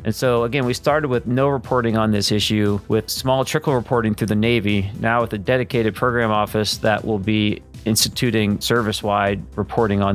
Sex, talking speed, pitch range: male, 185 wpm, 105-115 Hz